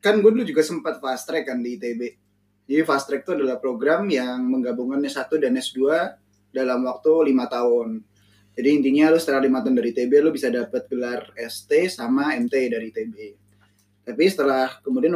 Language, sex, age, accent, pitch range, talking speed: Indonesian, male, 20-39, native, 125-155 Hz, 180 wpm